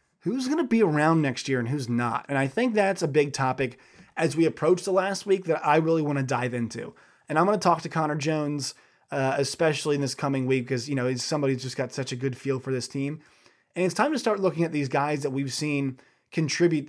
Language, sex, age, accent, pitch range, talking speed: English, male, 20-39, American, 130-165 Hz, 250 wpm